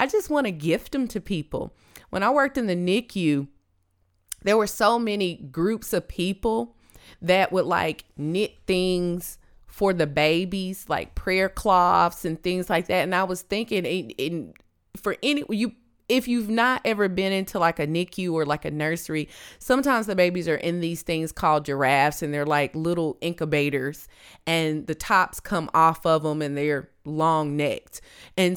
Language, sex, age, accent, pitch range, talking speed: English, female, 20-39, American, 165-240 Hz, 175 wpm